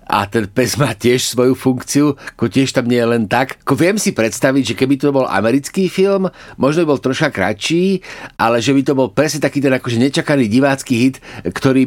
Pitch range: 115-135 Hz